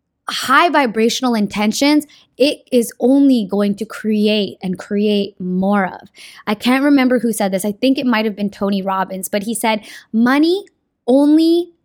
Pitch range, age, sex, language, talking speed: 210-280 Hz, 10-29, female, English, 160 wpm